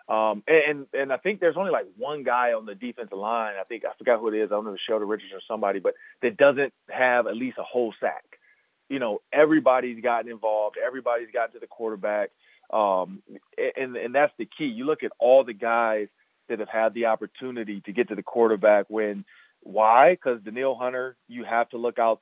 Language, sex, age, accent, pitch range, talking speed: English, male, 30-49, American, 110-130 Hz, 215 wpm